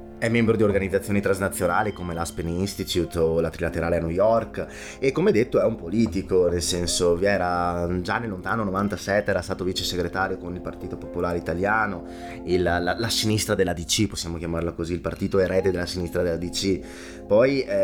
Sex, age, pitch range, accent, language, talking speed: male, 20-39, 85-95 Hz, native, Italian, 180 wpm